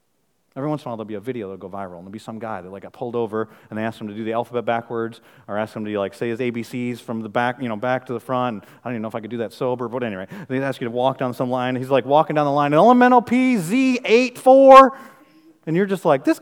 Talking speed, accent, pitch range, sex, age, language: 305 wpm, American, 120-185 Hz, male, 30-49, English